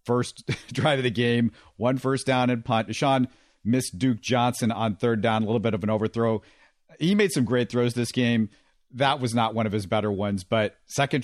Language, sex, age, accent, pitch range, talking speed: English, male, 50-69, American, 110-130 Hz, 215 wpm